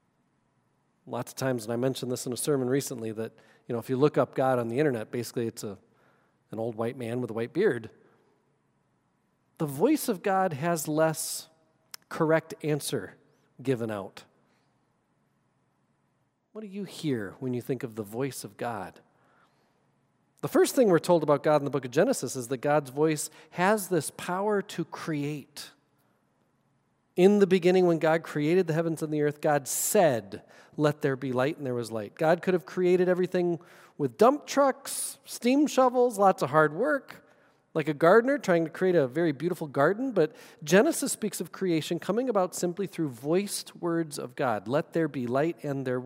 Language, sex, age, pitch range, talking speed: English, male, 40-59, 130-180 Hz, 180 wpm